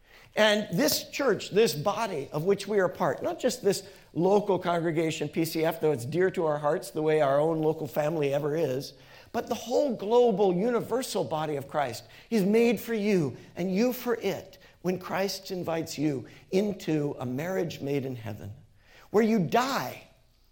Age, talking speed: 50-69, 175 wpm